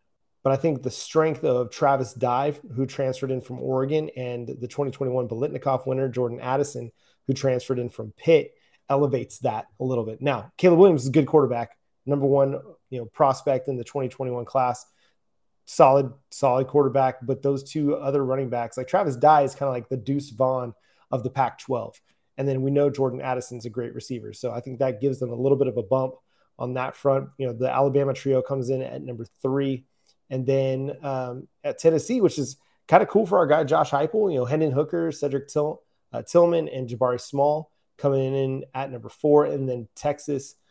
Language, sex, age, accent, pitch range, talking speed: English, male, 30-49, American, 125-145 Hz, 200 wpm